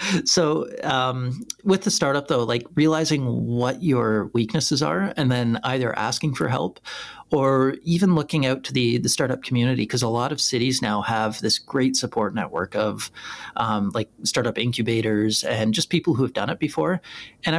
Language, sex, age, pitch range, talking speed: English, male, 40-59, 110-140 Hz, 175 wpm